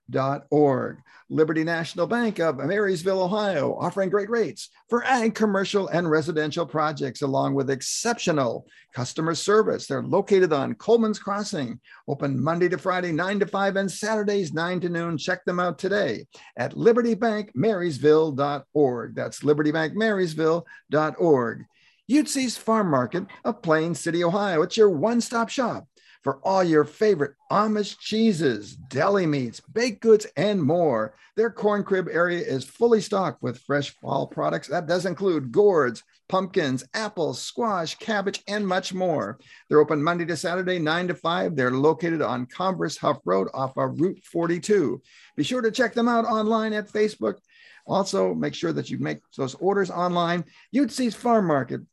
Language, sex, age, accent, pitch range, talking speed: English, male, 50-69, American, 155-210 Hz, 155 wpm